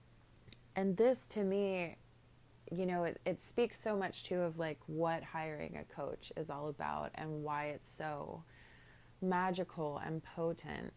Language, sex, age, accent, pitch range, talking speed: English, female, 20-39, American, 125-170 Hz, 155 wpm